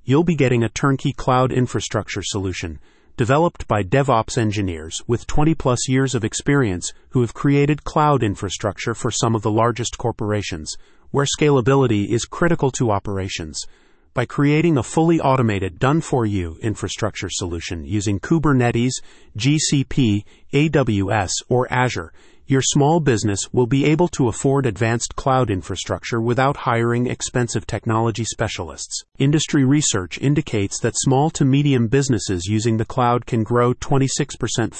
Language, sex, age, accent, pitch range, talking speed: English, male, 40-59, American, 105-135 Hz, 135 wpm